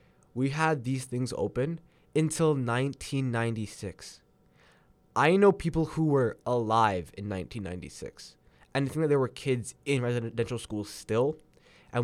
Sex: male